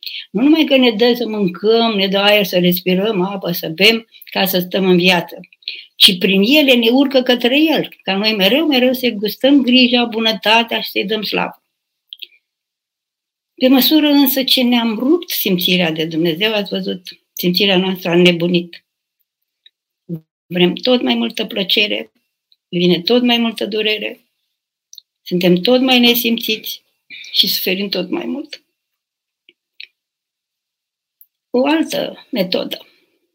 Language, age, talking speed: Romanian, 60-79, 135 wpm